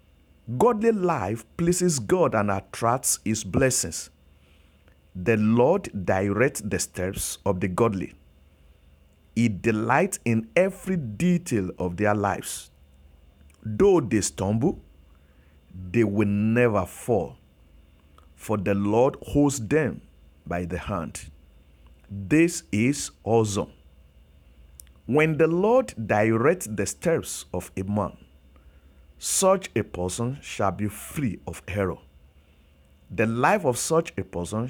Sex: male